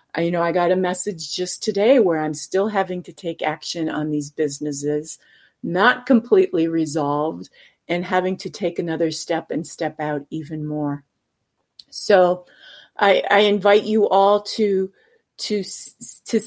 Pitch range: 160-205 Hz